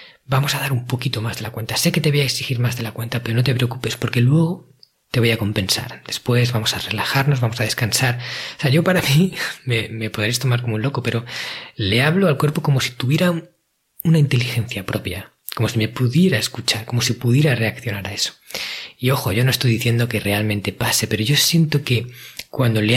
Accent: Spanish